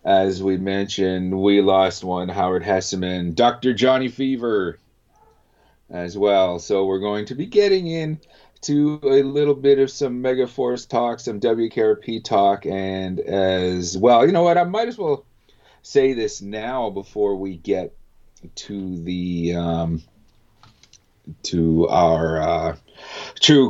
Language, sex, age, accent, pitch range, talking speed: English, male, 30-49, American, 95-130 Hz, 135 wpm